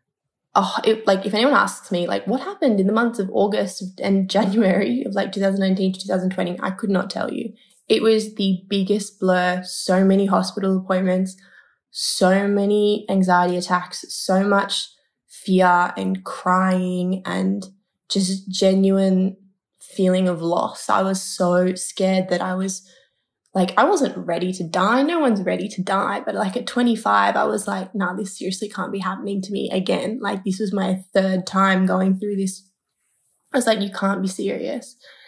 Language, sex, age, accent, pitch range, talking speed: English, female, 20-39, Australian, 185-205 Hz, 170 wpm